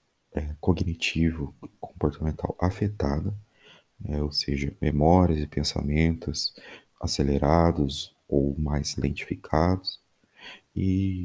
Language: Portuguese